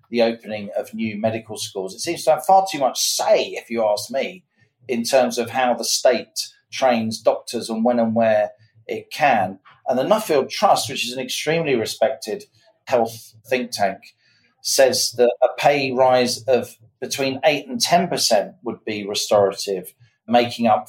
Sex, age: male, 40-59